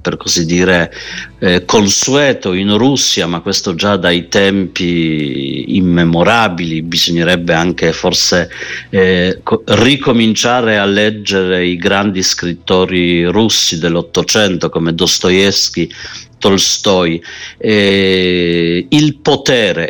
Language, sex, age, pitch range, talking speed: Italian, male, 50-69, 85-105 Hz, 95 wpm